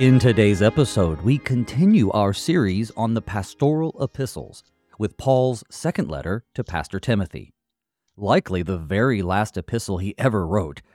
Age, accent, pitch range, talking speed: 40-59, American, 95-130 Hz, 140 wpm